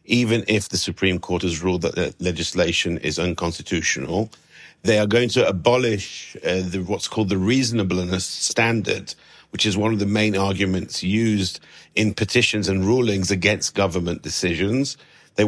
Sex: male